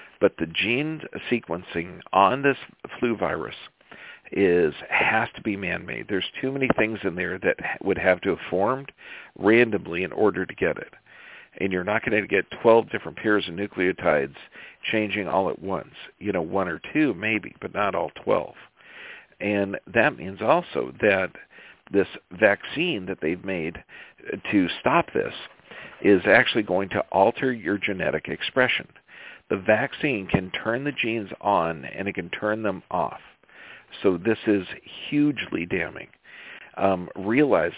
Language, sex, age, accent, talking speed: English, male, 50-69, American, 155 wpm